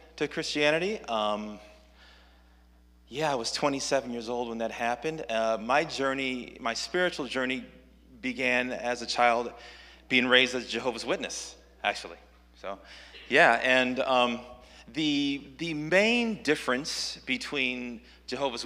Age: 30-49